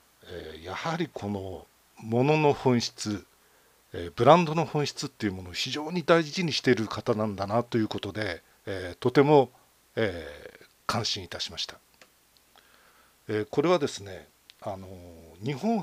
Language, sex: Japanese, male